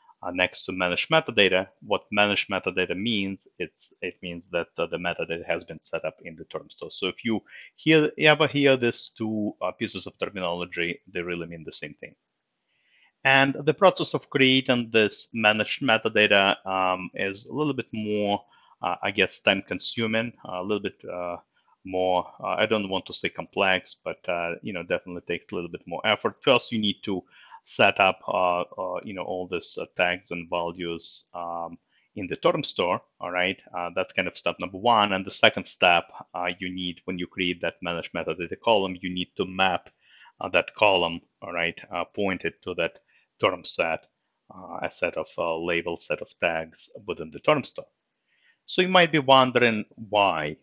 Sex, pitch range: male, 90-120 Hz